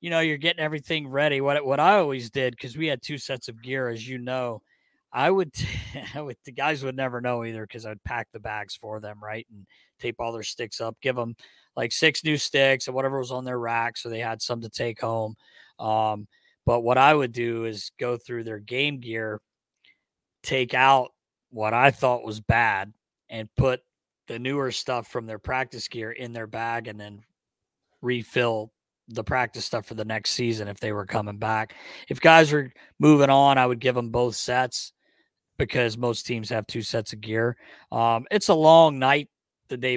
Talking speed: 205 wpm